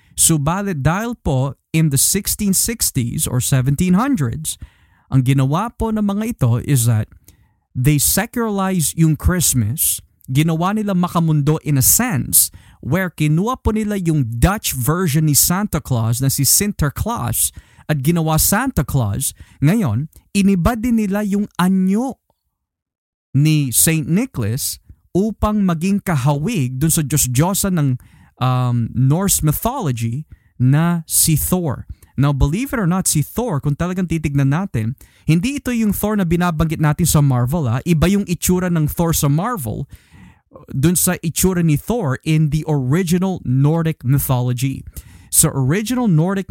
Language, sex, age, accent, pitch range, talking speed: Filipino, male, 20-39, native, 130-180 Hz, 135 wpm